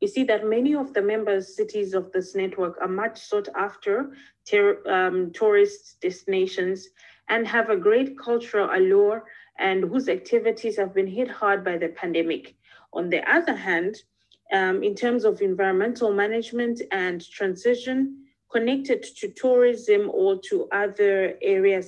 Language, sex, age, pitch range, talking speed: English, female, 30-49, 195-310 Hz, 145 wpm